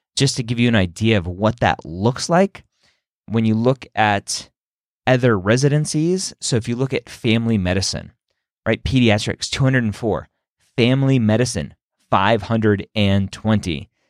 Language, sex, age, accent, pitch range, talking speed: English, male, 30-49, American, 95-130 Hz, 130 wpm